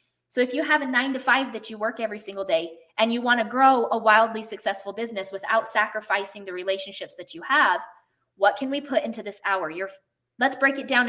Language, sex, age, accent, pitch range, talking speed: English, female, 20-39, American, 200-255 Hz, 225 wpm